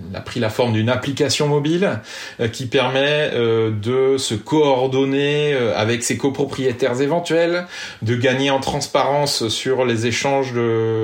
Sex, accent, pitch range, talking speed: male, French, 110-140 Hz, 125 wpm